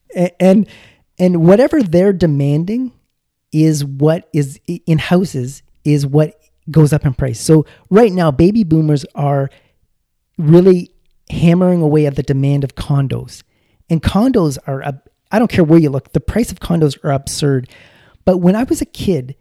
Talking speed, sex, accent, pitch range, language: 165 wpm, male, American, 140-175 Hz, English